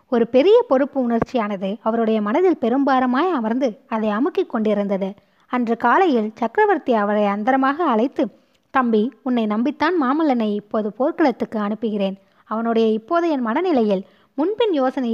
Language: Tamil